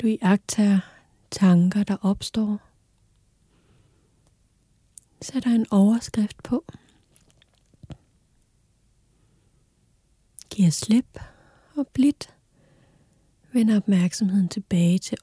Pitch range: 125-210 Hz